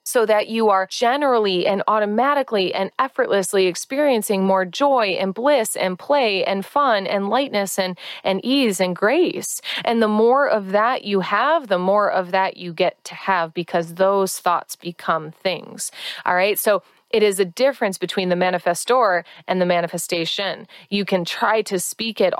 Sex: female